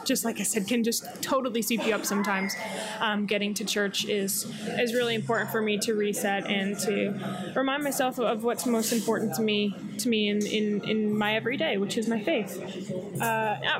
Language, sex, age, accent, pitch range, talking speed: English, female, 20-39, American, 205-240 Hz, 195 wpm